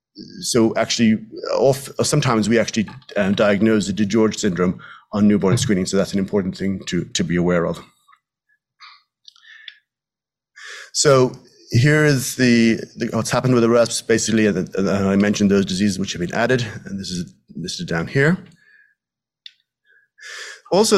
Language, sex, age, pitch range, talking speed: English, male, 30-49, 100-125 Hz, 135 wpm